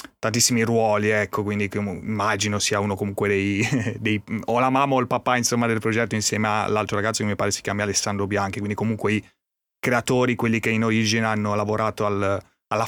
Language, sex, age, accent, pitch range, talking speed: Italian, male, 30-49, native, 95-115 Hz, 190 wpm